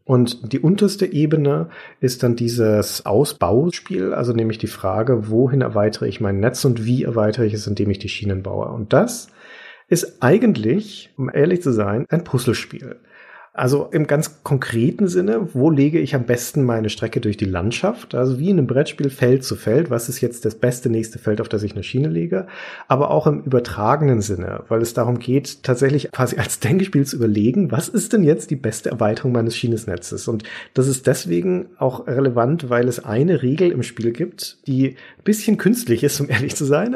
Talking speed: 195 wpm